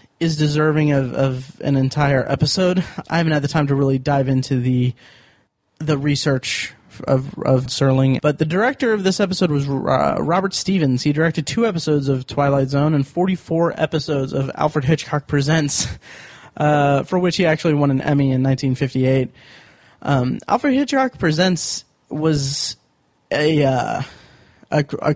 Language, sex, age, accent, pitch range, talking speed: English, male, 20-39, American, 135-160 Hz, 160 wpm